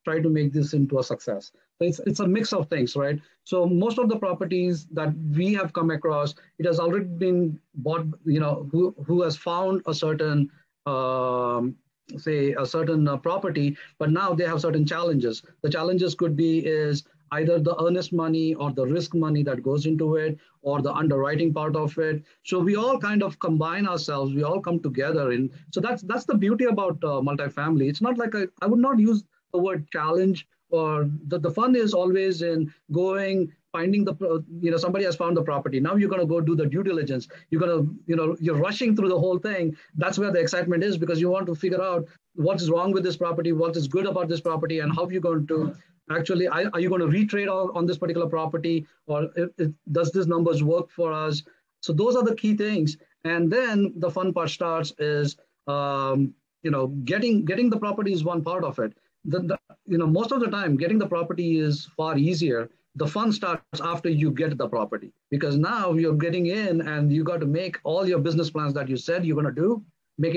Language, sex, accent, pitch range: English, male, Indian, 155-180 Hz